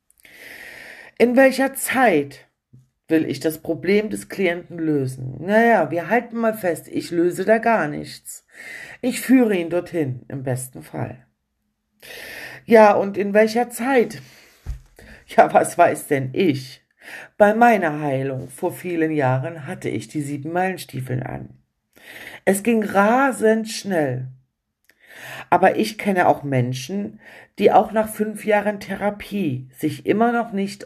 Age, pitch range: 50-69, 135-205 Hz